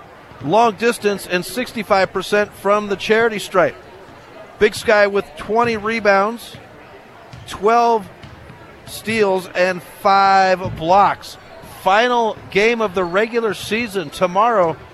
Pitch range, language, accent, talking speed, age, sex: 180-215 Hz, English, American, 100 wpm, 50-69, male